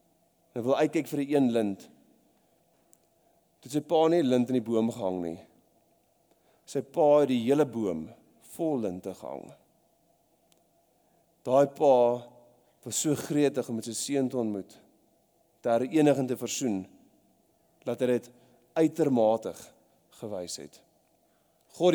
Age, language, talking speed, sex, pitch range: 40-59, English, 125 wpm, male, 125-160 Hz